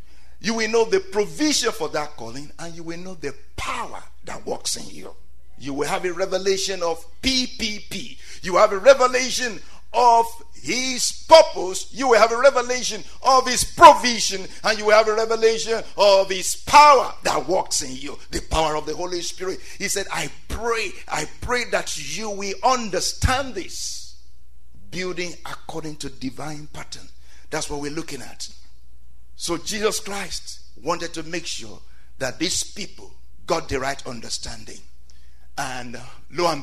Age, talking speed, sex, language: 50-69, 160 wpm, male, English